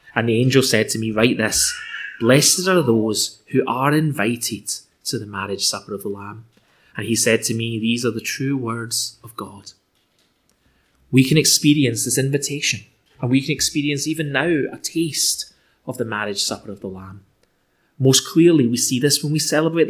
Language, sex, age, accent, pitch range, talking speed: English, male, 20-39, British, 110-145 Hz, 185 wpm